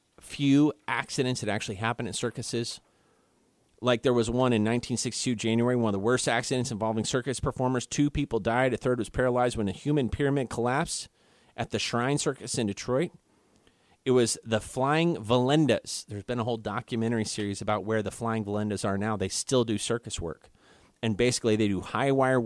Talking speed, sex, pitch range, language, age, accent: 185 wpm, male, 110-140 Hz, English, 30-49, American